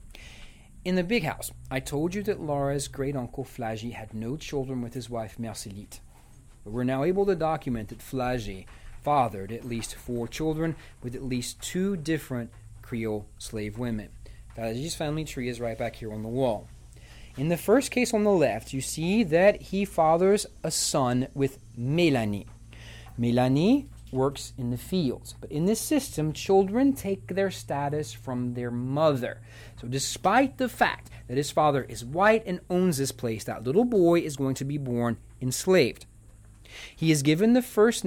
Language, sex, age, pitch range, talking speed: English, male, 40-59, 115-160 Hz, 170 wpm